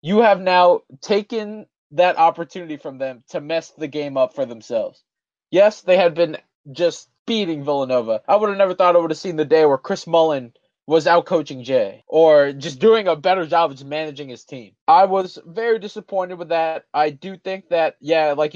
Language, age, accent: English, 20-39, American